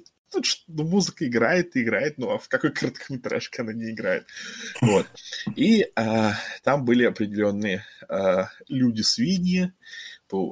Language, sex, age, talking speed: Russian, male, 20-39, 125 wpm